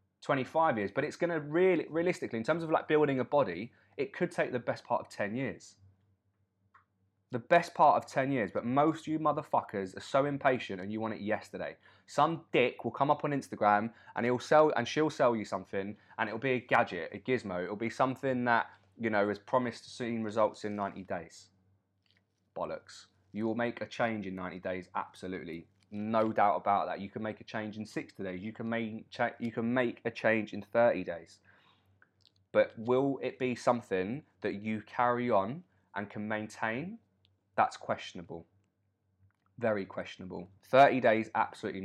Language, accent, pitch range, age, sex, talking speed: English, British, 100-125 Hz, 20-39, male, 185 wpm